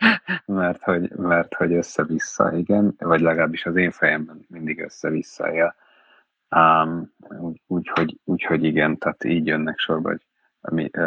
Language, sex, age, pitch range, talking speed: Hungarian, male, 30-49, 80-85 Hz, 130 wpm